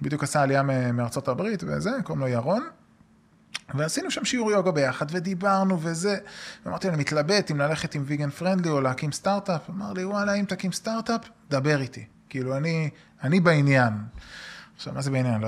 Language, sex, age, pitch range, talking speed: Hebrew, male, 20-39, 140-215 Hz, 170 wpm